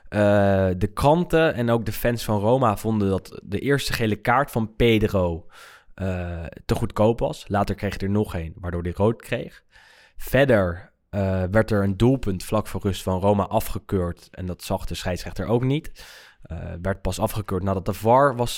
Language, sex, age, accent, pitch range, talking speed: Dutch, male, 20-39, Dutch, 95-110 Hz, 185 wpm